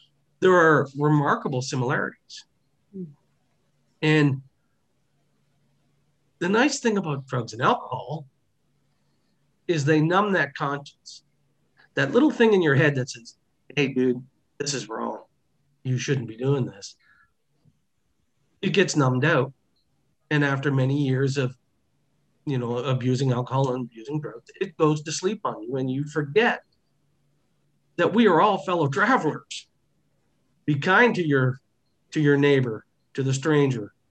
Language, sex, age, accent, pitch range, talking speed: English, male, 40-59, American, 130-160 Hz, 135 wpm